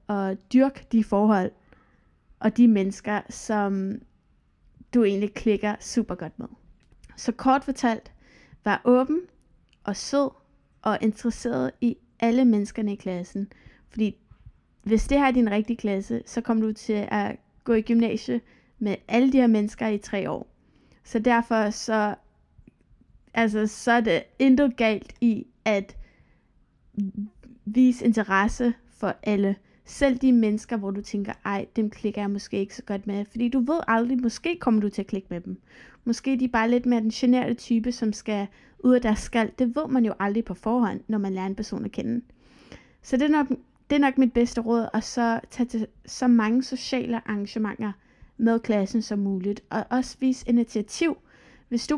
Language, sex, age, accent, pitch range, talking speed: Danish, female, 20-39, native, 210-245 Hz, 175 wpm